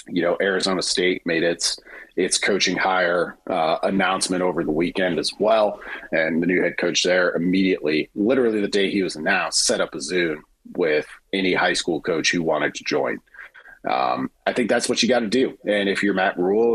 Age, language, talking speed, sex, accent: 30-49, English, 200 wpm, male, American